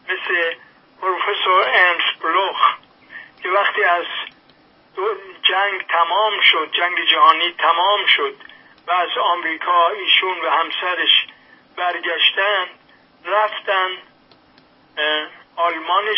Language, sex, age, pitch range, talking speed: English, male, 50-69, 170-215 Hz, 80 wpm